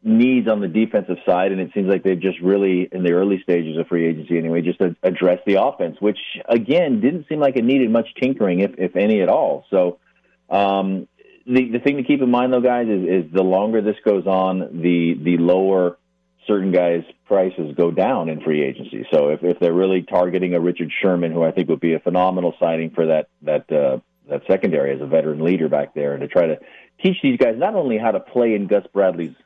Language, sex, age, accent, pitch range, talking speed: English, male, 40-59, American, 85-105 Hz, 230 wpm